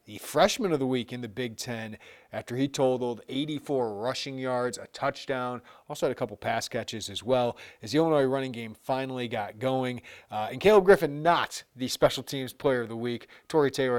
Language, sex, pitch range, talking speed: English, male, 120-150 Hz, 200 wpm